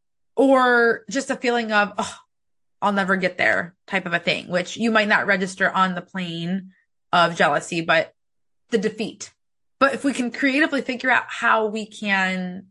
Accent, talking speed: American, 175 wpm